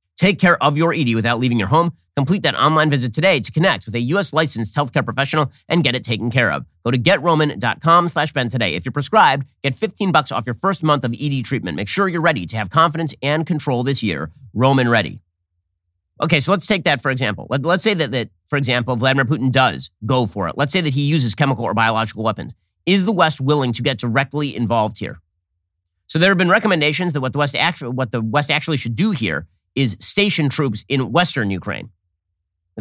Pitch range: 110-150 Hz